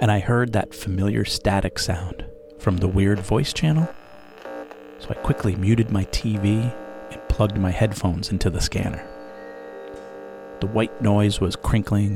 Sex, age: male, 30-49